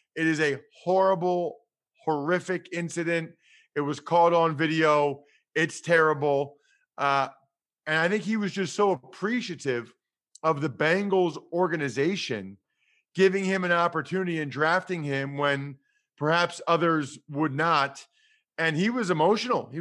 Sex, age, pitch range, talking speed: male, 40-59, 160-210 Hz, 130 wpm